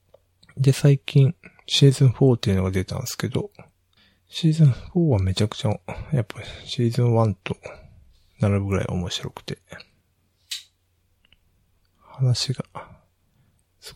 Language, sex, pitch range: Japanese, male, 90-115 Hz